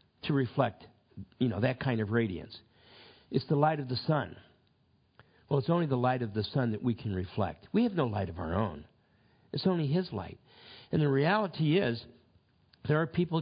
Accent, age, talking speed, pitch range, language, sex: American, 50-69, 195 wpm, 105-130 Hz, English, male